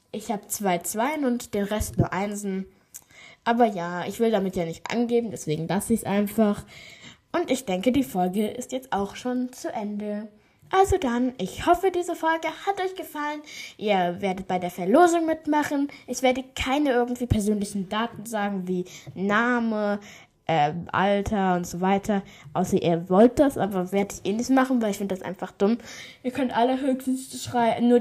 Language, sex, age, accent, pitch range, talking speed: German, female, 10-29, German, 195-245 Hz, 180 wpm